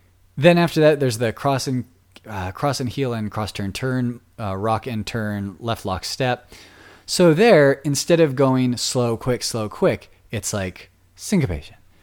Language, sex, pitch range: English, male, 90-125 Hz